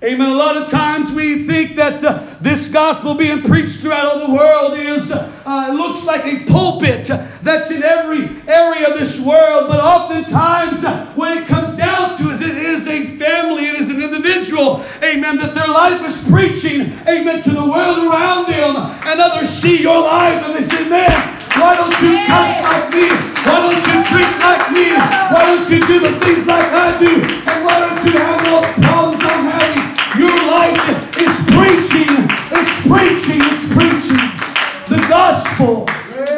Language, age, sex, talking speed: English, 40-59, male, 180 wpm